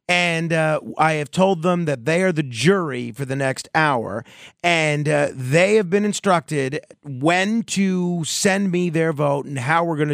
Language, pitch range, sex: English, 130-170 Hz, male